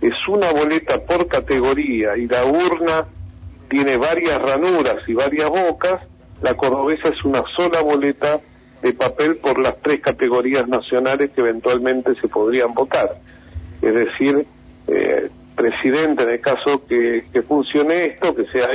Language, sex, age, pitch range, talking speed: Spanish, male, 50-69, 125-175 Hz, 145 wpm